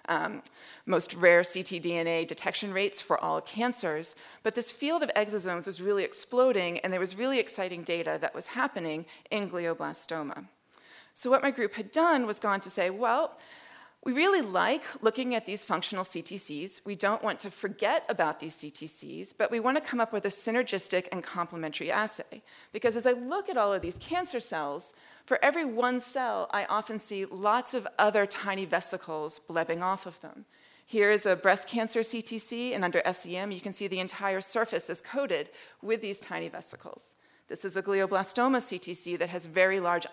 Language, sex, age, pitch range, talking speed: English, female, 40-59, 180-230 Hz, 185 wpm